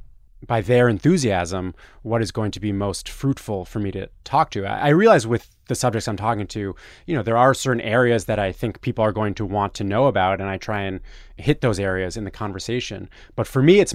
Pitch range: 95-120 Hz